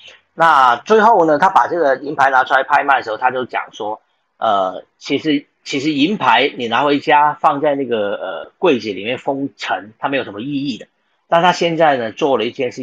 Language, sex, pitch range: Chinese, male, 125-195 Hz